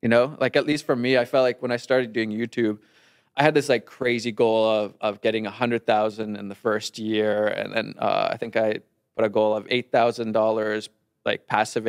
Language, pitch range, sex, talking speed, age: English, 110-145 Hz, male, 220 wpm, 20-39